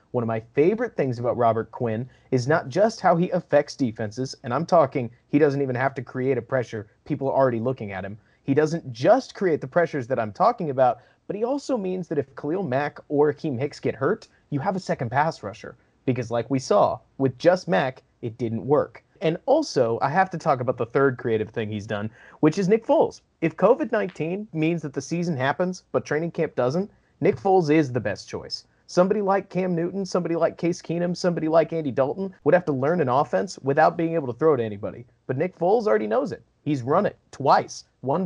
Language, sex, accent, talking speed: English, male, American, 220 wpm